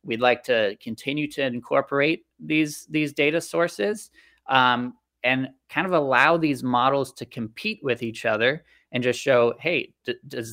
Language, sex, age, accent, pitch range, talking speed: English, male, 20-39, American, 120-145 Hz, 160 wpm